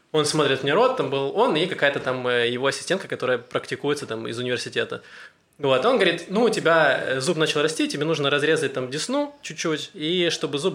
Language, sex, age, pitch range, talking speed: Russian, male, 20-39, 135-175 Hz, 200 wpm